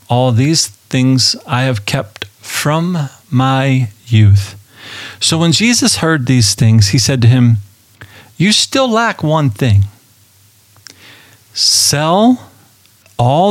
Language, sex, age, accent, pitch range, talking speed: English, male, 40-59, American, 105-135 Hz, 115 wpm